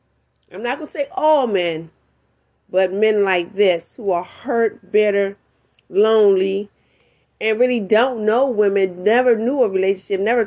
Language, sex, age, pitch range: English, female, 30-49, 190-265 Hz